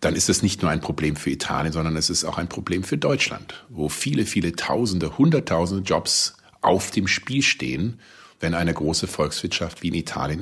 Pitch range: 80-95 Hz